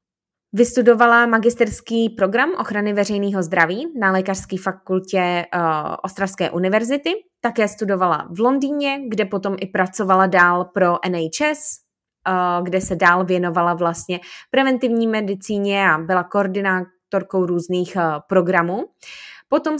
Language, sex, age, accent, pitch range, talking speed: Czech, female, 20-39, native, 185-235 Hz, 115 wpm